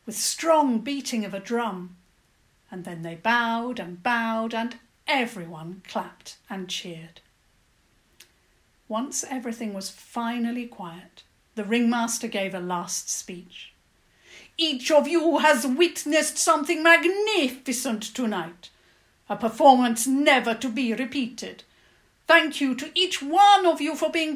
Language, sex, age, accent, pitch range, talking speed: English, female, 50-69, British, 210-295 Hz, 125 wpm